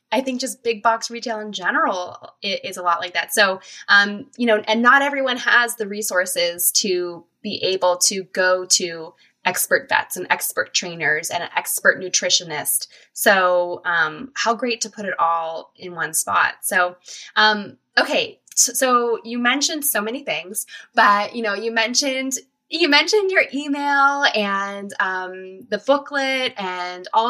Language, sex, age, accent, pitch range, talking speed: English, female, 20-39, American, 190-245 Hz, 165 wpm